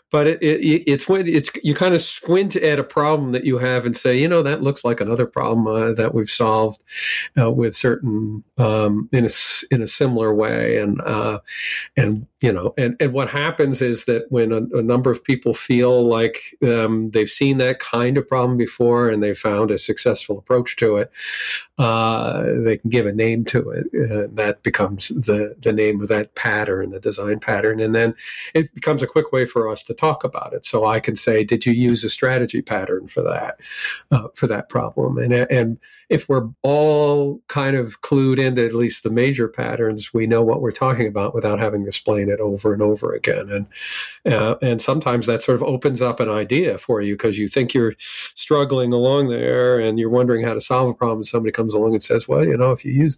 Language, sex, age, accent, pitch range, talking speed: English, male, 50-69, American, 110-135 Hz, 215 wpm